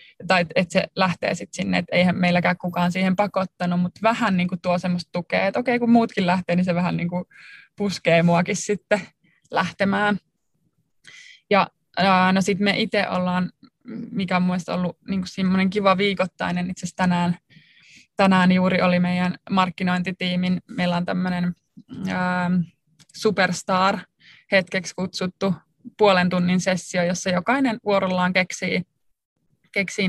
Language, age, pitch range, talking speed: Finnish, 20-39, 180-195 Hz, 130 wpm